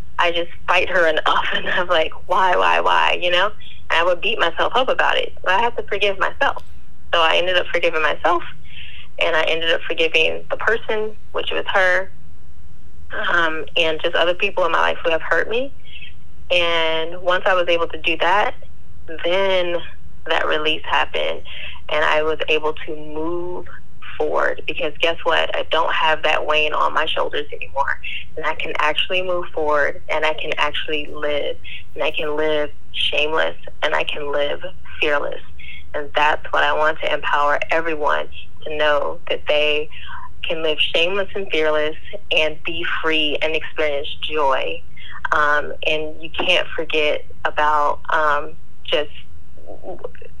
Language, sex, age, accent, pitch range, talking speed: English, female, 20-39, American, 150-210 Hz, 160 wpm